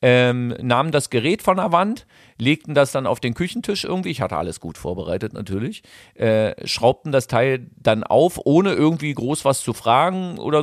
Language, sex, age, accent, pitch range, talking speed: German, male, 40-59, German, 110-150 Hz, 180 wpm